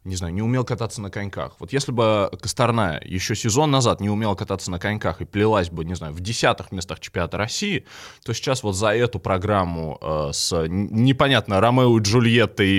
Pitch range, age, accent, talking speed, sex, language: 90-120 Hz, 20-39, native, 190 wpm, male, Russian